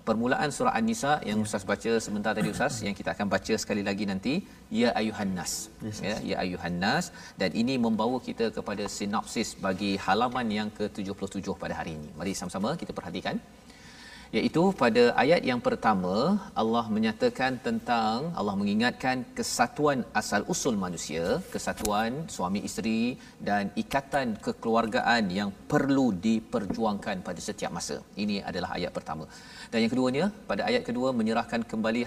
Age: 40-59